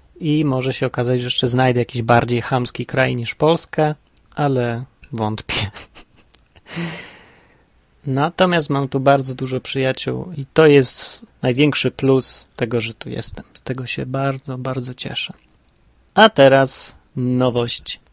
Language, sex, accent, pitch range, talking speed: Polish, male, native, 125-165 Hz, 130 wpm